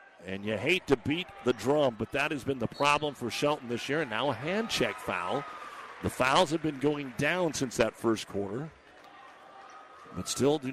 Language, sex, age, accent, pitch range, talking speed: English, male, 50-69, American, 130-155 Hz, 200 wpm